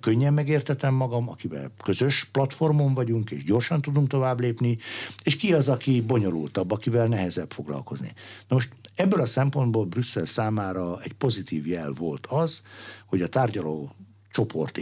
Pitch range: 95-130 Hz